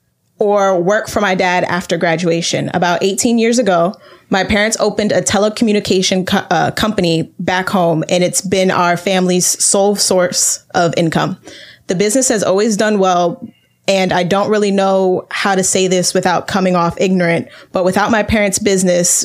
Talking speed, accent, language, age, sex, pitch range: 165 wpm, American, English, 10-29, female, 180-205 Hz